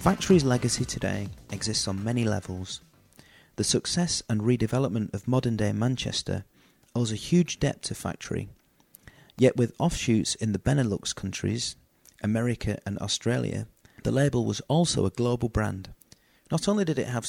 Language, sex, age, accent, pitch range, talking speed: English, male, 30-49, British, 105-135 Hz, 150 wpm